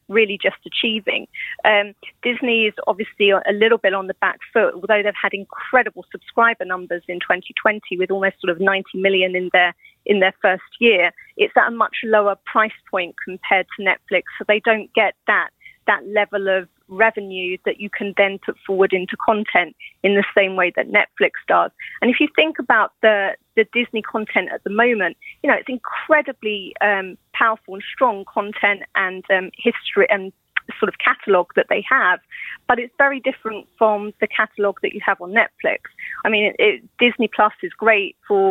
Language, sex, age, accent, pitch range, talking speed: English, female, 30-49, British, 195-230 Hz, 185 wpm